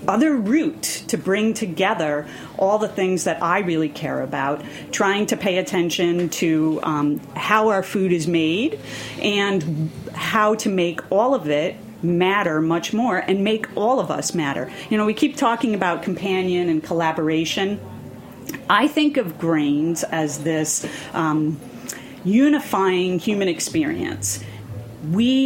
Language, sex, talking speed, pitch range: English, female, 140 wpm, 170-245 Hz